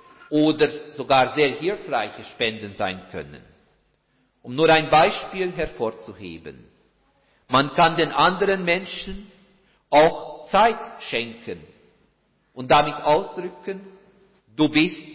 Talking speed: 100 wpm